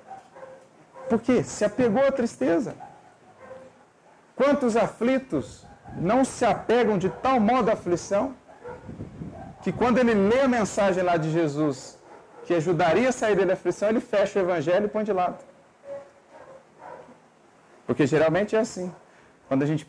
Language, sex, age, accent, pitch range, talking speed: Portuguese, male, 40-59, Brazilian, 150-215 Hz, 140 wpm